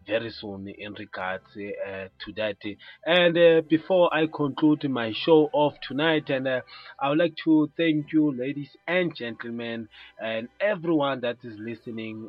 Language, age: English, 30-49